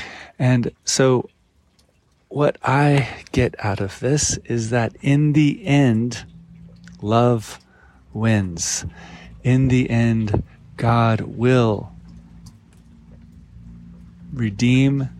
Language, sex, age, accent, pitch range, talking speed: English, male, 40-59, American, 100-120 Hz, 85 wpm